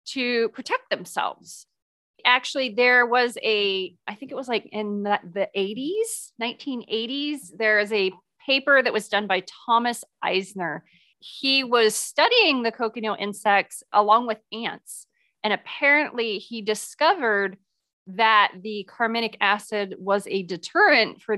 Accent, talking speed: American, 135 wpm